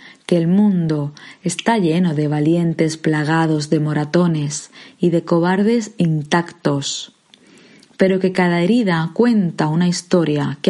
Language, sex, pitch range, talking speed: Spanish, female, 155-195 Hz, 125 wpm